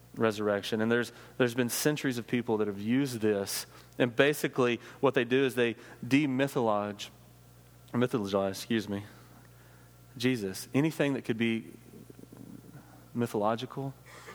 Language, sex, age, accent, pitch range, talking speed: English, male, 30-49, American, 110-140 Hz, 120 wpm